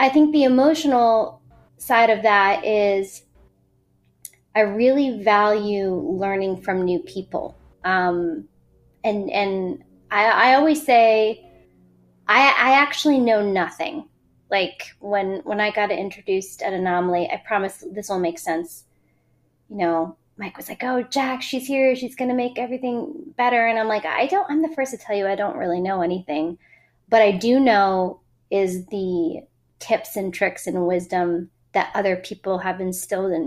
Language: English